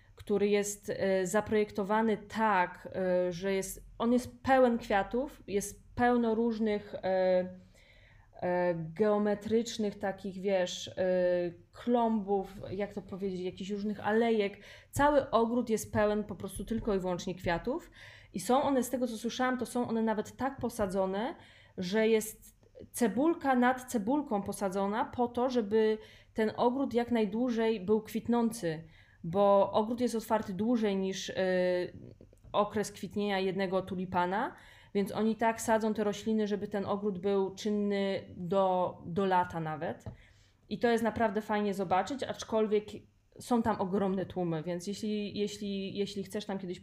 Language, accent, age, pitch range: Polish, native, 20-39, 185-220 Hz